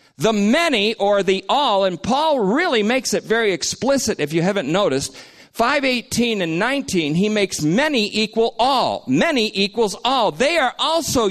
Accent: American